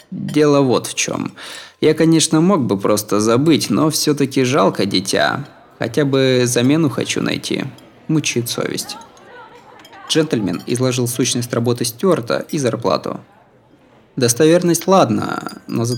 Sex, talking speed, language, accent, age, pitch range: male, 120 wpm, Russian, native, 20-39, 105-145 Hz